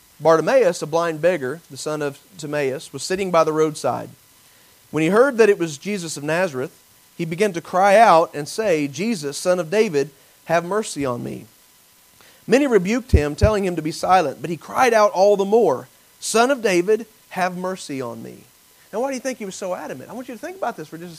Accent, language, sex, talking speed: American, English, male, 220 wpm